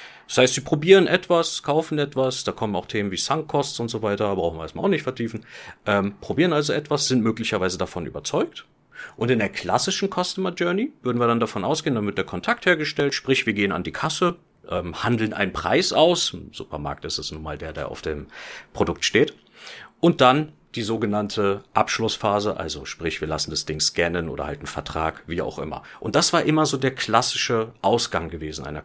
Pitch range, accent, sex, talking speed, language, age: 95-145 Hz, German, male, 200 wpm, German, 40-59